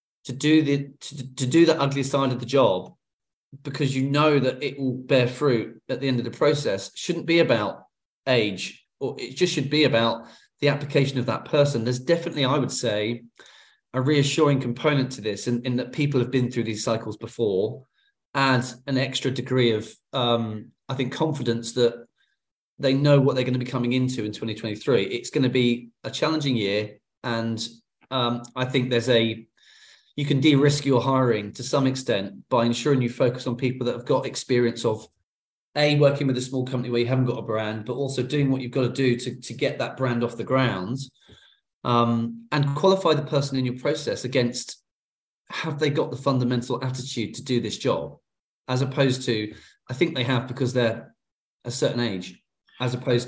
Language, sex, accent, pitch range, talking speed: English, male, British, 120-140 Hz, 200 wpm